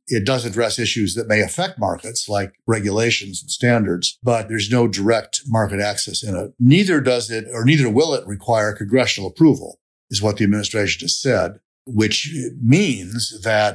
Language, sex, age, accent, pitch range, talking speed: English, male, 50-69, American, 105-125 Hz, 170 wpm